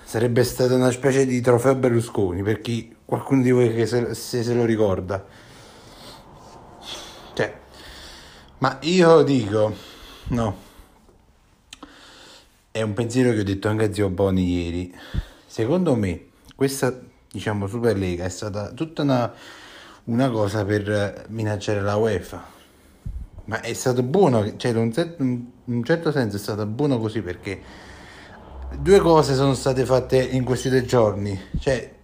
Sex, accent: male, native